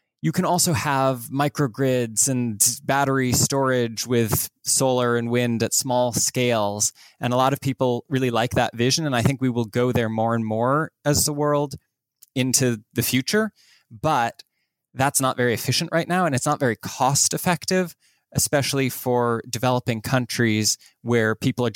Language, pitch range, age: English, 110-130 Hz, 20-39